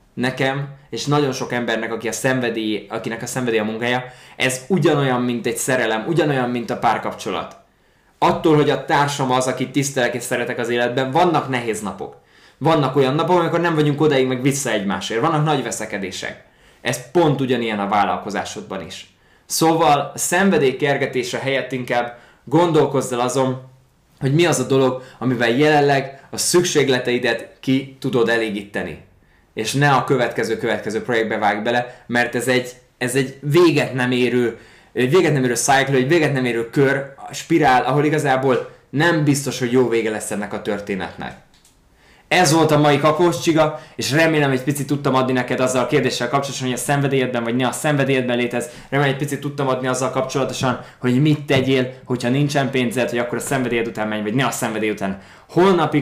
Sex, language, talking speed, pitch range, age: male, Hungarian, 170 wpm, 120-145 Hz, 20-39